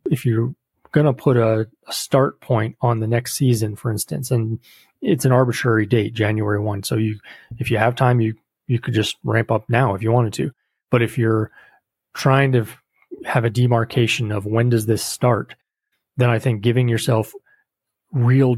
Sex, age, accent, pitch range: male, 30-49, American, 110-125 Hz